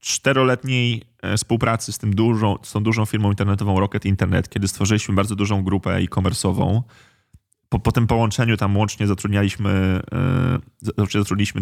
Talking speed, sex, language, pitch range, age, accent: 120 wpm, male, Polish, 100-115 Hz, 20-39, native